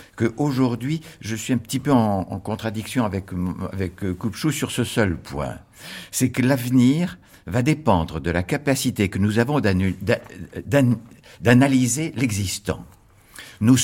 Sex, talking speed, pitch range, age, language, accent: male, 140 wpm, 90-125 Hz, 60-79, French, French